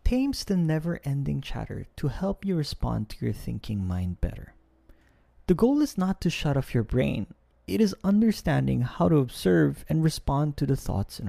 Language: English